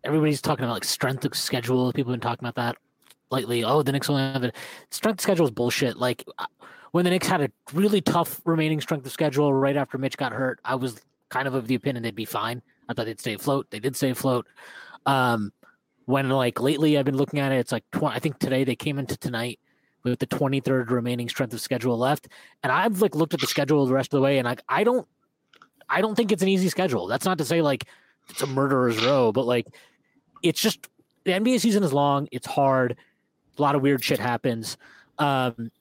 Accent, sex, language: American, male, English